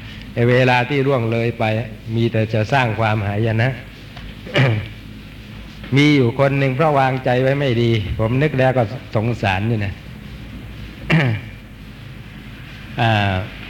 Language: Thai